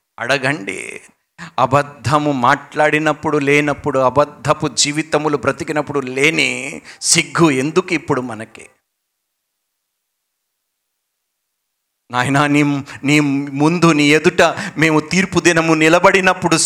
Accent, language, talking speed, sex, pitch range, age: native, Telugu, 80 wpm, male, 140-180 Hz, 50-69